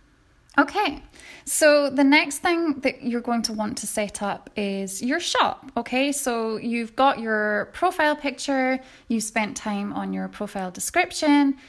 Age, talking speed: 10-29, 155 wpm